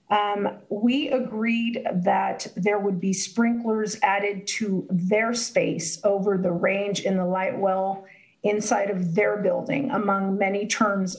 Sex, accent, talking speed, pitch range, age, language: female, American, 140 wpm, 195-230 Hz, 40-59, English